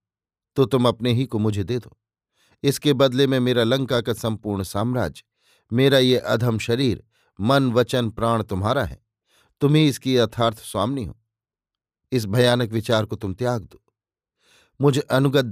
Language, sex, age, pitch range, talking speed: Hindi, male, 50-69, 110-135 Hz, 155 wpm